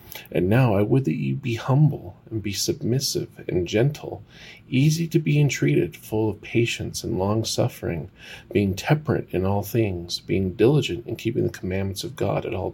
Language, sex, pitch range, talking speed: English, male, 100-120 Hz, 175 wpm